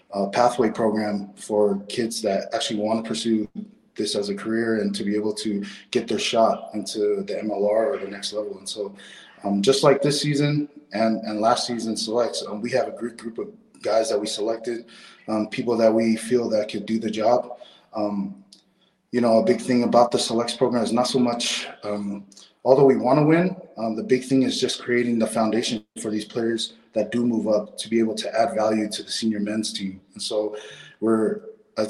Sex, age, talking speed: male, 20-39, 215 wpm